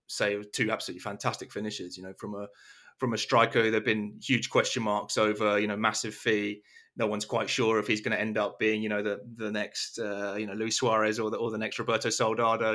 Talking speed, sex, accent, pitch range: 235 wpm, male, British, 105-120 Hz